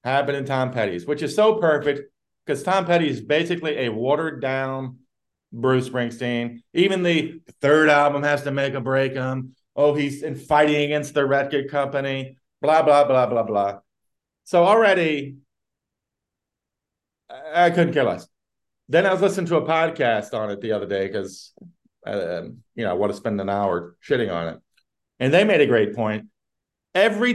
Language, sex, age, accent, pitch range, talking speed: English, male, 40-59, American, 130-175 Hz, 170 wpm